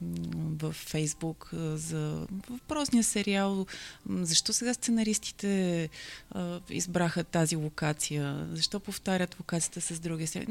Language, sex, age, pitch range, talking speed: Bulgarian, female, 20-39, 165-210 Hz, 95 wpm